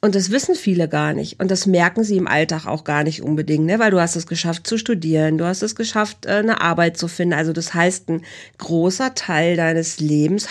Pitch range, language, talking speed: 170-215 Hz, German, 230 wpm